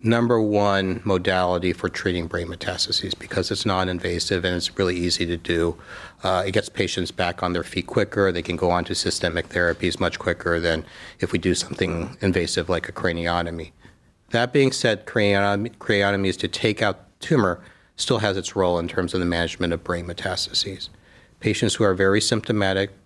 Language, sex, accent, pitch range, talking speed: English, male, American, 90-105 Hz, 180 wpm